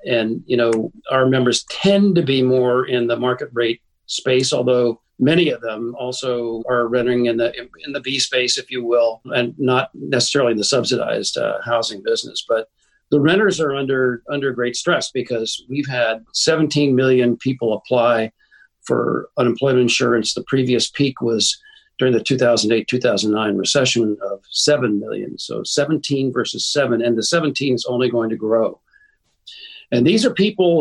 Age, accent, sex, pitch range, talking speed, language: 50-69, American, male, 115-140 Hz, 165 wpm, English